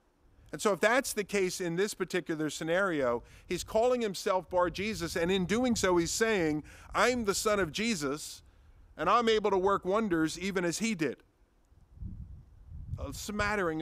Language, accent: English, American